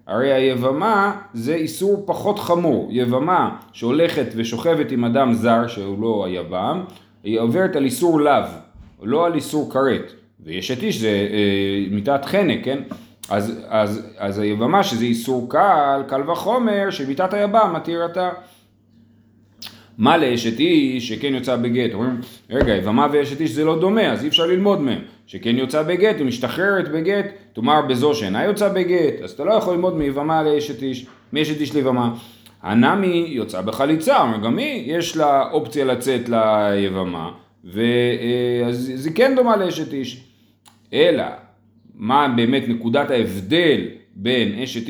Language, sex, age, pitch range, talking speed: Hebrew, male, 30-49, 115-170 Hz, 145 wpm